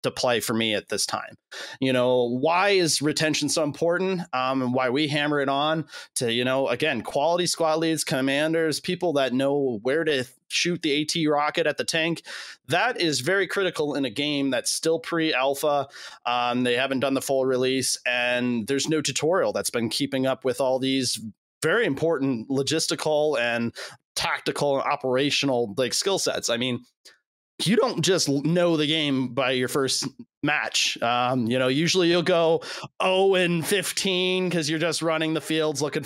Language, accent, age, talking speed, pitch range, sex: English, American, 30-49, 175 wpm, 125-160 Hz, male